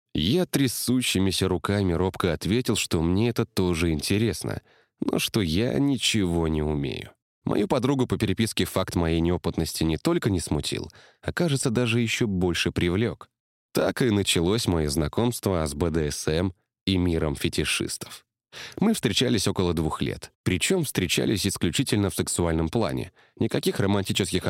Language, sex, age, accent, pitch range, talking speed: Russian, male, 20-39, native, 85-115 Hz, 135 wpm